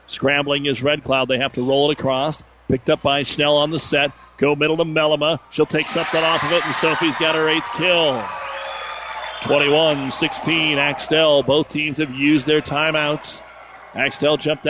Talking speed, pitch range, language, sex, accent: 175 wpm, 135-160 Hz, English, male, American